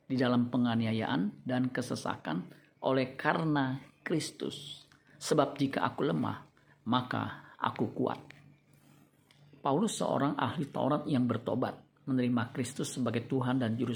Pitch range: 125-145 Hz